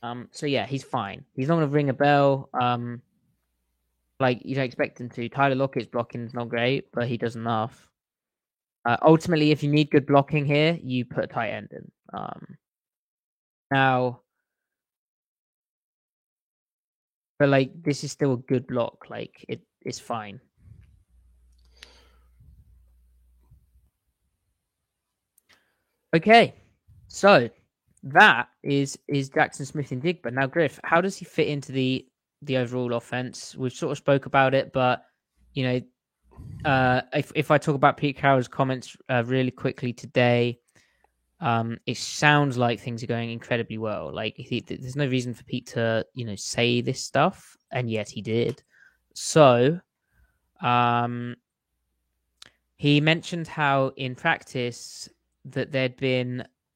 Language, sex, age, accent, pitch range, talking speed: English, male, 20-39, British, 115-140 Hz, 140 wpm